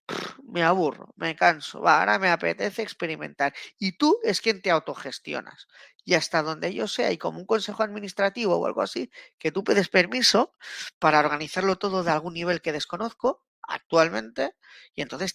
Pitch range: 165-230 Hz